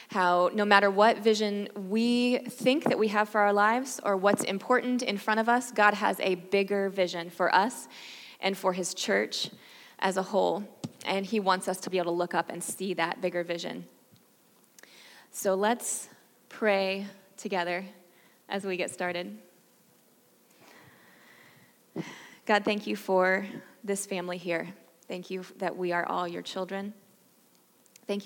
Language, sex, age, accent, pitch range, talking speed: English, female, 20-39, American, 180-205 Hz, 155 wpm